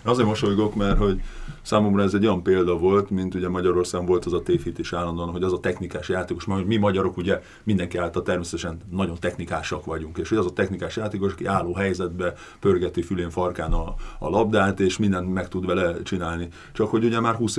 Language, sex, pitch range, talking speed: Hungarian, male, 85-100 Hz, 210 wpm